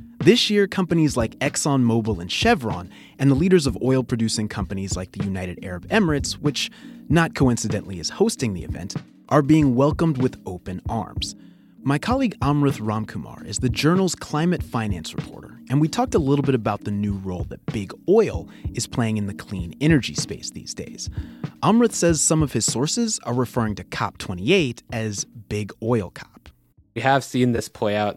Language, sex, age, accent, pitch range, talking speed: English, male, 30-49, American, 100-130 Hz, 175 wpm